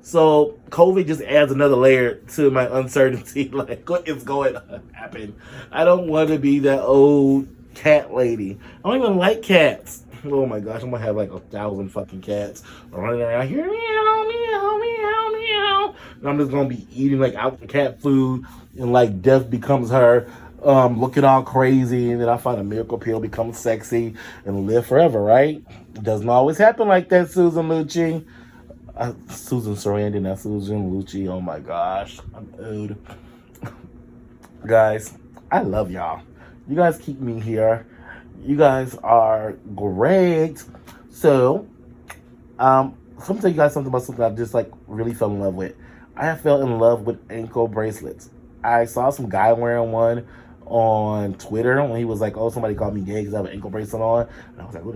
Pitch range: 110-145 Hz